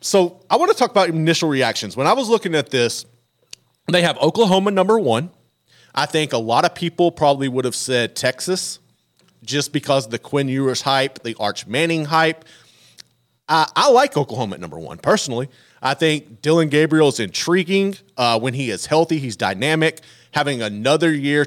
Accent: American